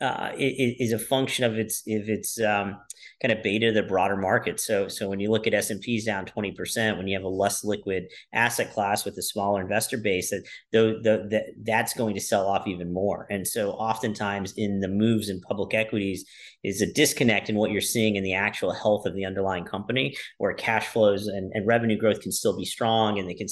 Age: 40-59